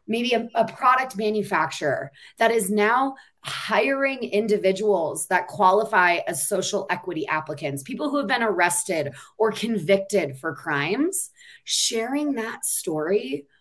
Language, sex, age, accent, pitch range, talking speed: English, female, 20-39, American, 180-245 Hz, 125 wpm